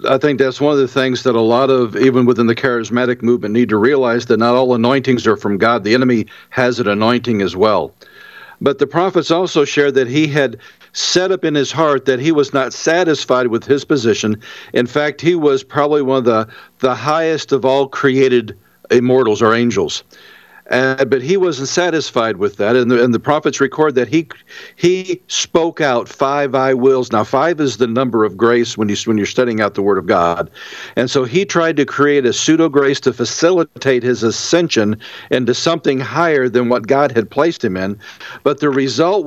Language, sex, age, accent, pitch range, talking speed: English, male, 60-79, American, 120-155 Hz, 205 wpm